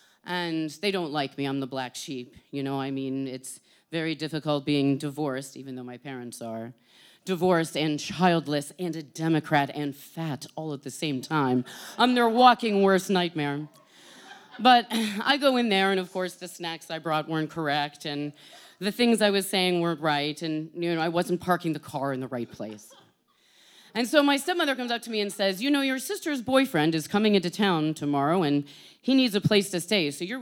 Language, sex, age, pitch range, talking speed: English, female, 30-49, 140-195 Hz, 205 wpm